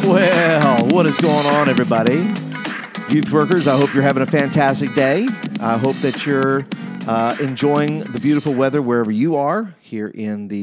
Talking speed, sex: 170 wpm, male